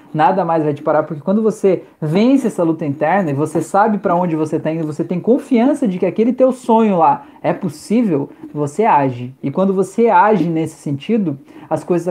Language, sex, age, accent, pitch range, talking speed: Portuguese, male, 20-39, Brazilian, 165-230 Hz, 205 wpm